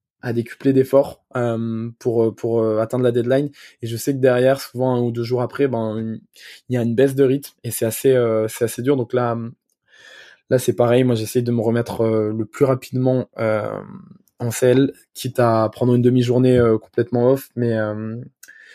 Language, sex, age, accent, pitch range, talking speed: French, male, 20-39, French, 115-130 Hz, 205 wpm